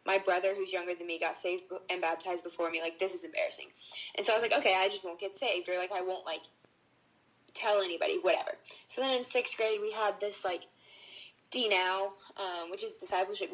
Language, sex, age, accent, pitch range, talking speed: English, female, 10-29, American, 180-230 Hz, 215 wpm